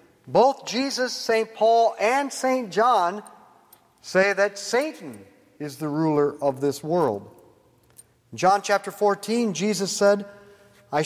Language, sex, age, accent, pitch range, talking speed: English, male, 50-69, American, 150-210 Hz, 125 wpm